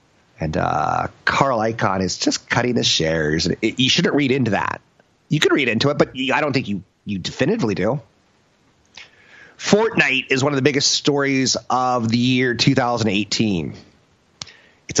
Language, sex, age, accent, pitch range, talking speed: English, male, 30-49, American, 105-150 Hz, 155 wpm